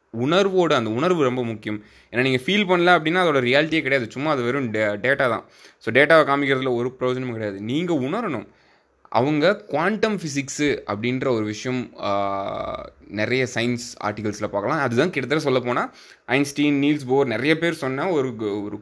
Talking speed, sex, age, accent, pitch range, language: 155 wpm, male, 20-39, native, 110-150 Hz, Tamil